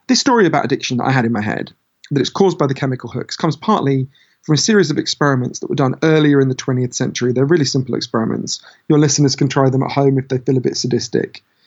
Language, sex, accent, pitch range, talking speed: English, male, British, 125-155 Hz, 250 wpm